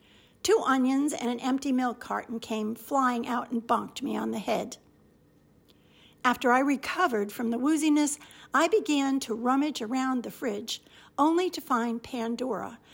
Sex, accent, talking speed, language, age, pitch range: female, American, 155 wpm, English, 50-69, 225-295 Hz